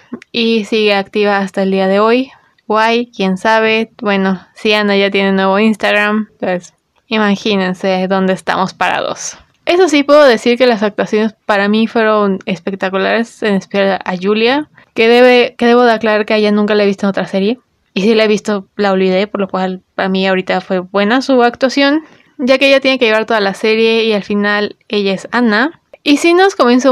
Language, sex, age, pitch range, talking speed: Spanish, female, 20-39, 200-235 Hz, 205 wpm